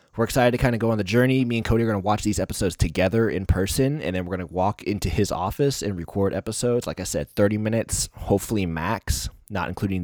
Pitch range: 85-115 Hz